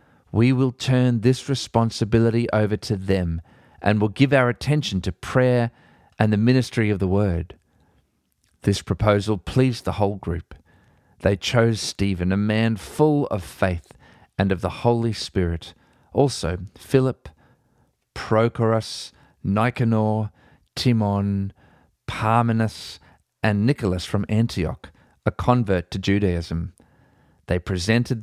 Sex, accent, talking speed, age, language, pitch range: male, Australian, 120 wpm, 40-59, English, 90-115 Hz